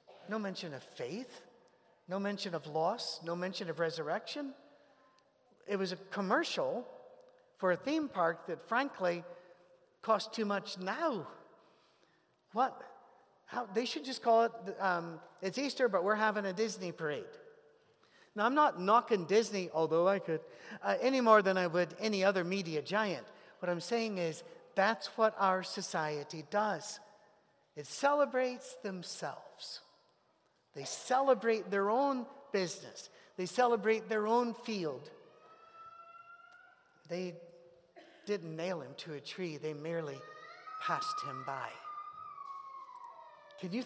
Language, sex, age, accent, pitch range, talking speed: English, male, 50-69, American, 175-260 Hz, 130 wpm